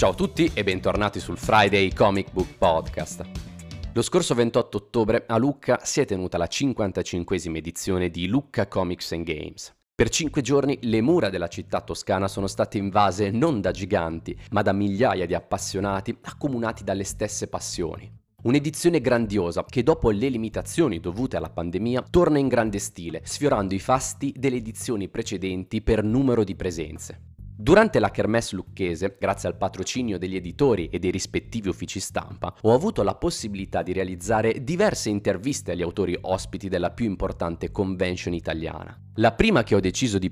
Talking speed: 160 wpm